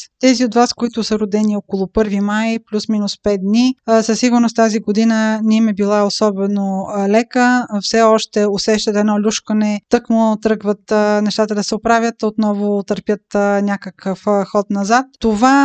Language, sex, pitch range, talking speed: Bulgarian, female, 205-240 Hz, 145 wpm